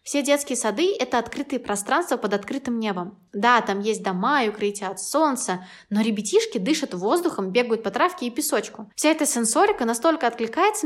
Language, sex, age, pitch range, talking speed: Russian, female, 20-39, 205-275 Hz, 170 wpm